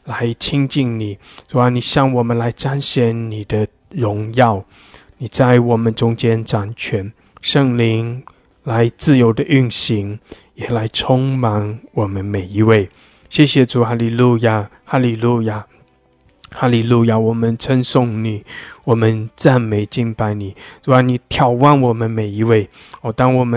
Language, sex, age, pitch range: English, male, 20-39, 110-125 Hz